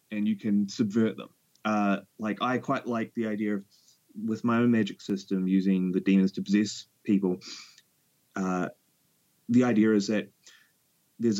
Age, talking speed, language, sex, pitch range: 30-49, 160 wpm, English, male, 100-125 Hz